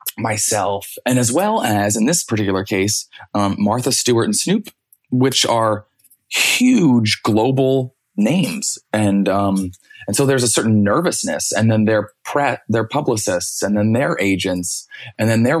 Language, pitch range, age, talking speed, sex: English, 100-125 Hz, 20-39, 155 wpm, male